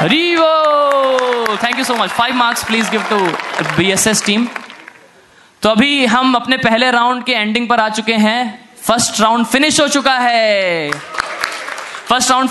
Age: 20-39